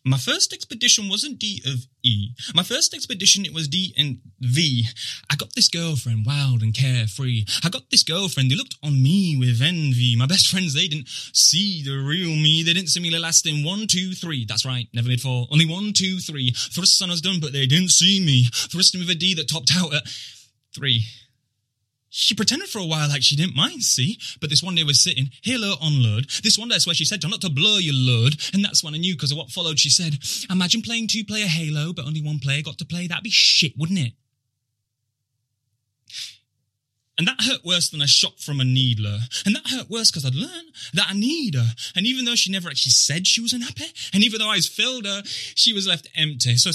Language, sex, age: English, male, 10-29